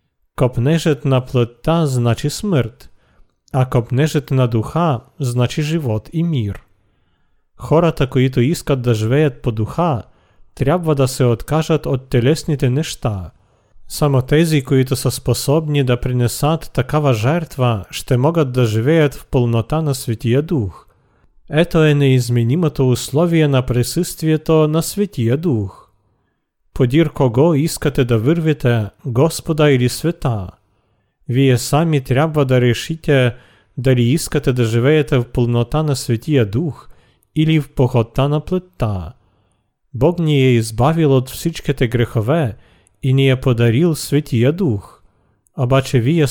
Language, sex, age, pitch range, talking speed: Bulgarian, male, 40-59, 120-150 Hz, 125 wpm